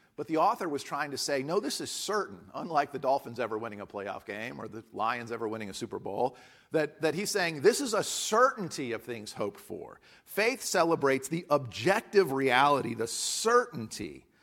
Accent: American